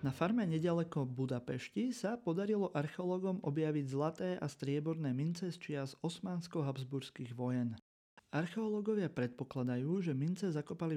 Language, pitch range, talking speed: Slovak, 140-180 Hz, 115 wpm